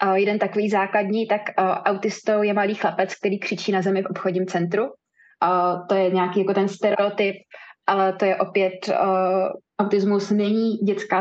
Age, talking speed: 20-39, 165 wpm